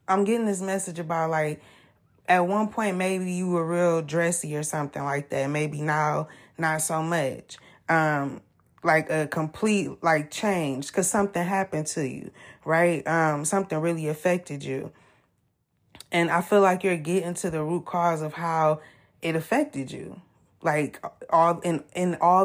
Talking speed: 160 wpm